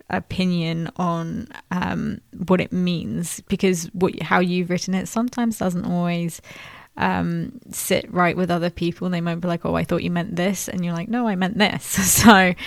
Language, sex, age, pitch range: English, female, 20-39, 175-195 Hz